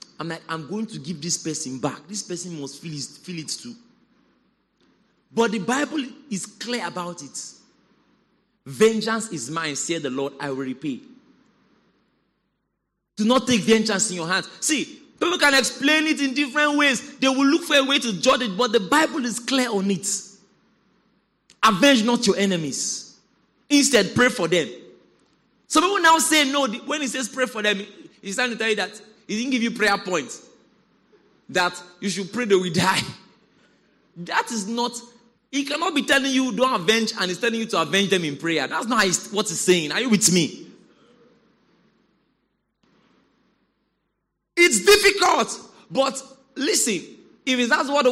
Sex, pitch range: male, 190-270 Hz